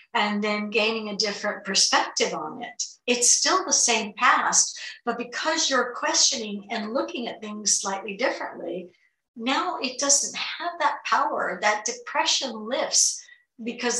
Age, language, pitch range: 60-79, English, 210-285 Hz